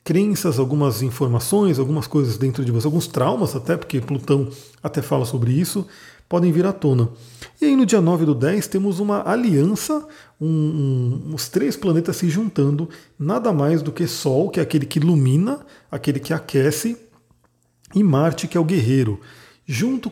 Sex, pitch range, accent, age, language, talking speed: male, 130-175 Hz, Brazilian, 40-59, Portuguese, 165 wpm